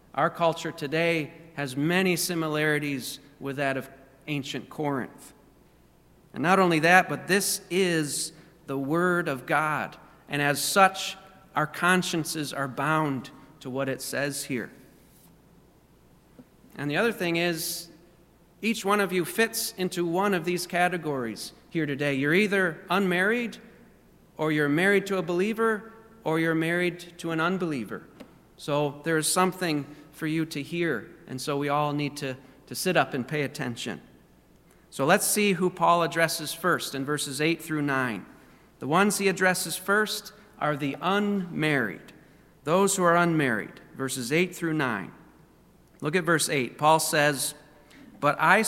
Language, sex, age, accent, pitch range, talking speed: English, male, 40-59, American, 145-180 Hz, 150 wpm